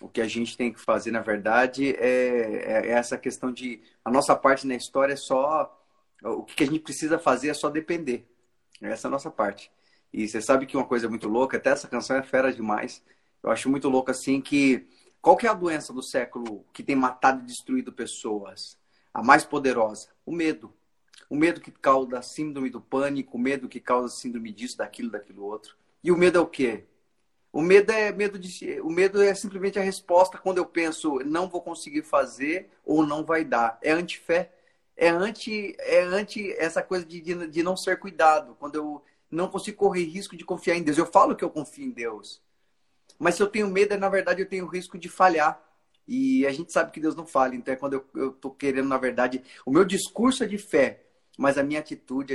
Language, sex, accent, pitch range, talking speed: Portuguese, male, Brazilian, 125-180 Hz, 215 wpm